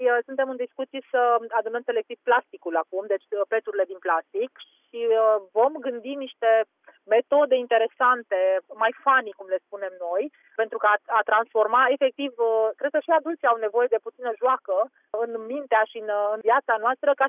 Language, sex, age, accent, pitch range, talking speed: Romanian, female, 30-49, native, 200-255 Hz, 155 wpm